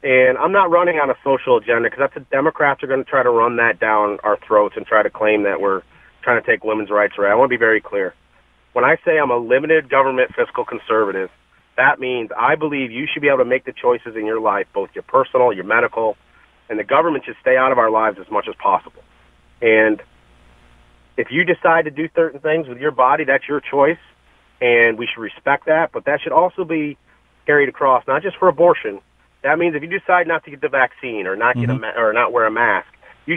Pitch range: 105-175 Hz